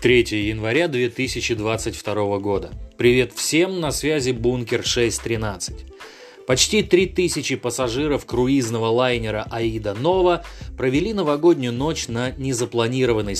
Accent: native